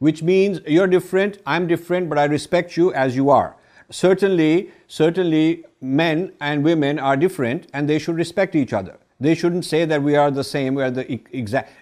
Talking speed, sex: 205 wpm, male